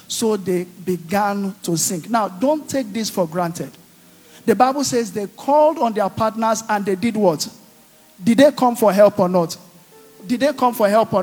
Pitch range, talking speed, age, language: 200-260 Hz, 190 wpm, 50-69, English